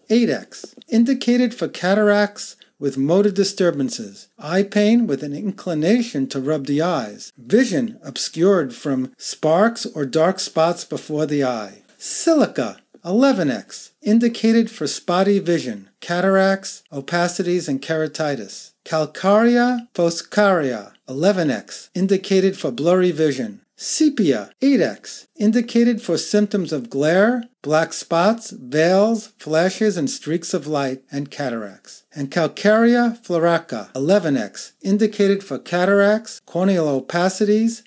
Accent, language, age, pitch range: American, English, 50-69, 150-220 Hz